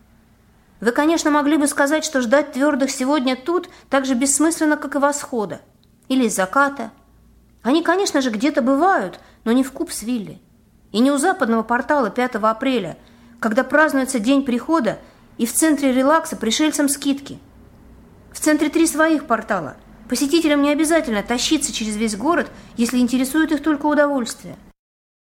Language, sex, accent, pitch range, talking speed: Russian, female, native, 210-295 Hz, 145 wpm